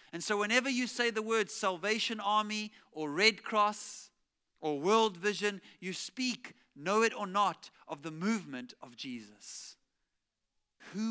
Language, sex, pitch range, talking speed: English, male, 190-225 Hz, 145 wpm